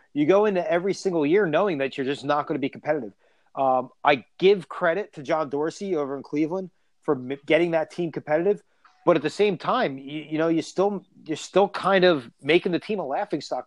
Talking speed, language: 220 wpm, English